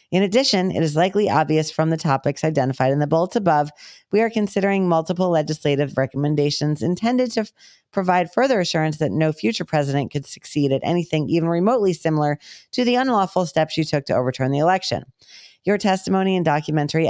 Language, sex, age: English, female, 40-59